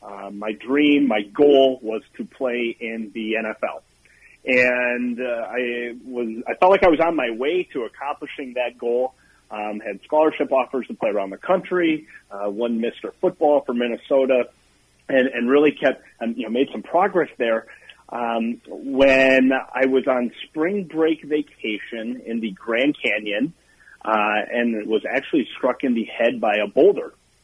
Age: 40-59